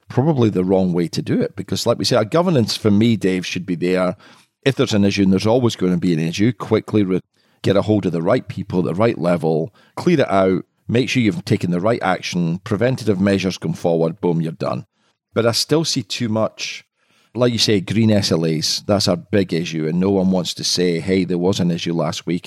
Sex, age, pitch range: male, 40-59, 90-120 Hz